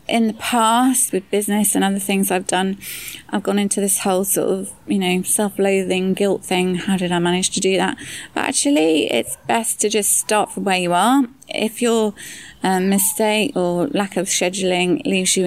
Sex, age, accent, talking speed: female, 20-39, British, 195 wpm